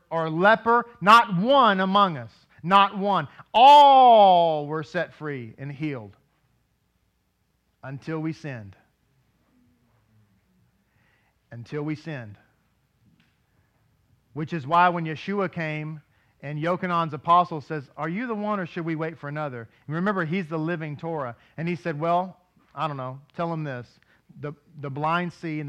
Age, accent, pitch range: 40-59, American, 140-190 Hz